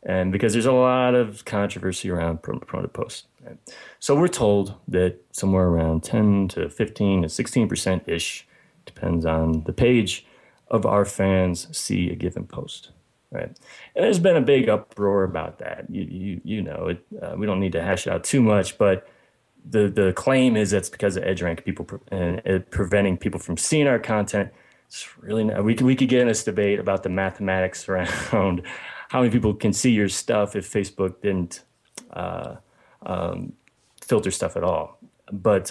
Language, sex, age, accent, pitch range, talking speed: English, male, 30-49, American, 95-115 Hz, 185 wpm